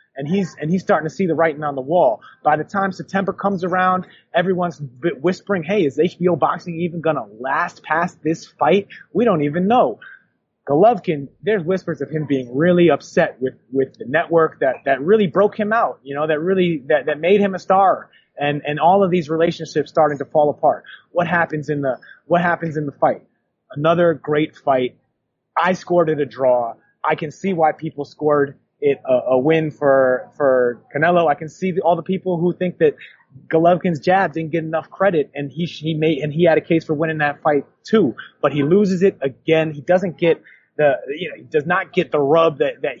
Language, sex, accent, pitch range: English, male, American, 150-180 Hz